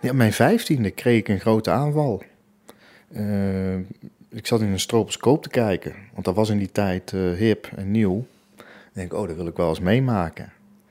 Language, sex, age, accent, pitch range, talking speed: Dutch, male, 40-59, Dutch, 95-120 Hz, 195 wpm